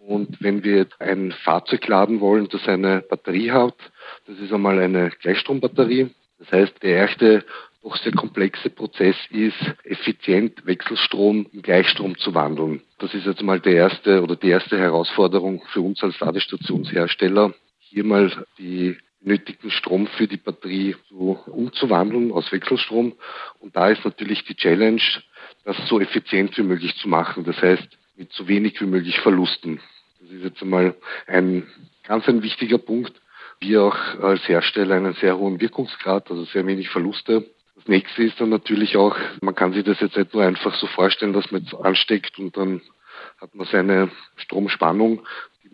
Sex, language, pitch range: male, German, 95-105 Hz